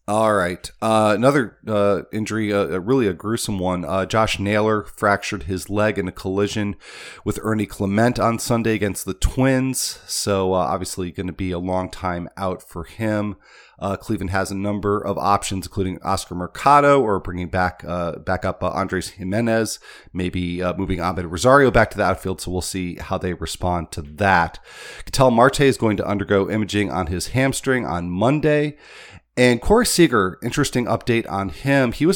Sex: male